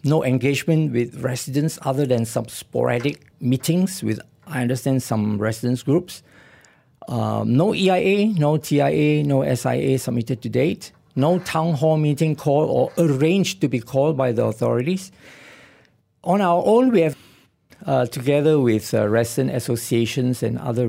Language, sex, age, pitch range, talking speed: English, male, 50-69, 125-155 Hz, 145 wpm